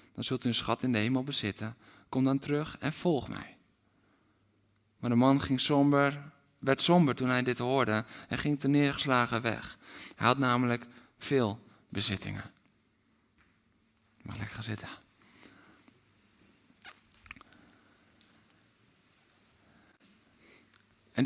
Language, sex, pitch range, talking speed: Dutch, male, 125-170 Hz, 115 wpm